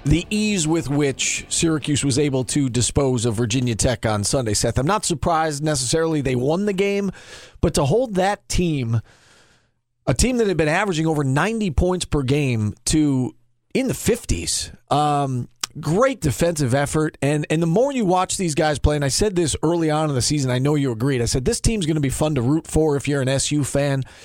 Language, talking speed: English, 210 wpm